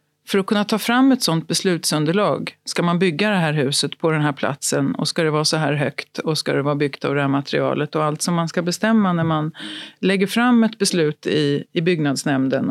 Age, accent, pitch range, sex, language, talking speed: 40-59, native, 160-205 Hz, female, Swedish, 230 wpm